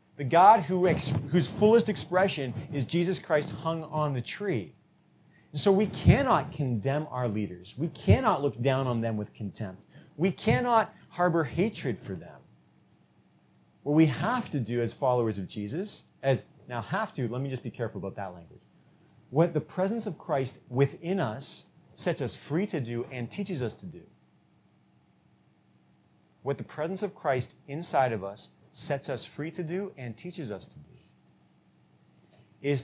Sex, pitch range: male, 110-165 Hz